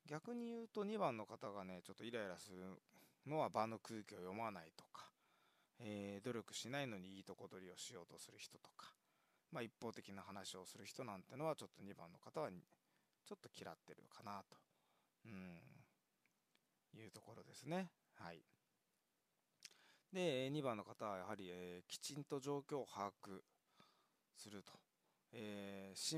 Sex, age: male, 20-39